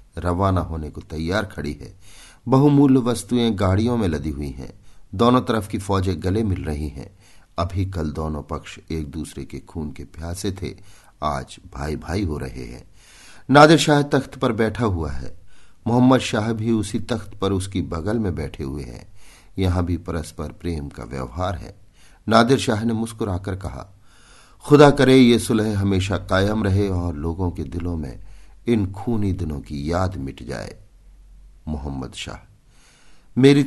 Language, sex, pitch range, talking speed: Hindi, male, 85-115 Hz, 160 wpm